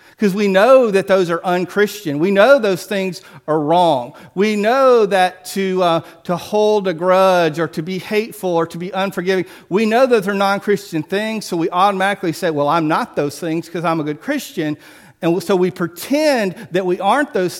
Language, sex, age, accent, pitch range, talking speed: English, male, 40-59, American, 180-250 Hz, 200 wpm